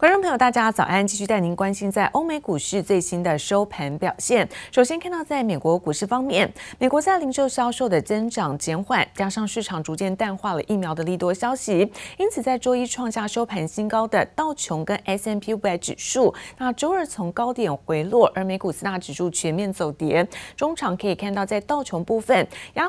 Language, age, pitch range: Chinese, 30-49, 175-245 Hz